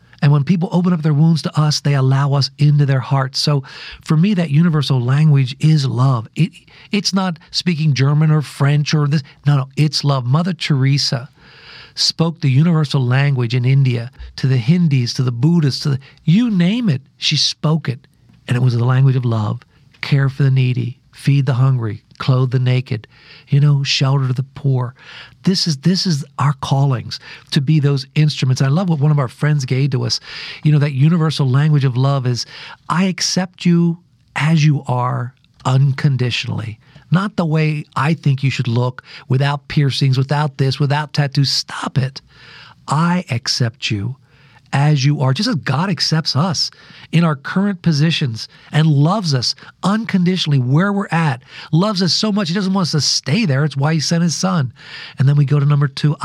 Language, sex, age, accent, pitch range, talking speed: English, male, 50-69, American, 135-165 Hz, 190 wpm